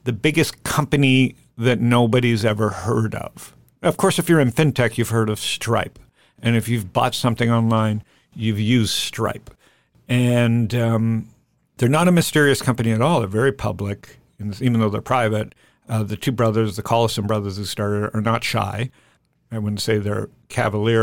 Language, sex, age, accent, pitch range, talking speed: English, male, 50-69, American, 110-130 Hz, 170 wpm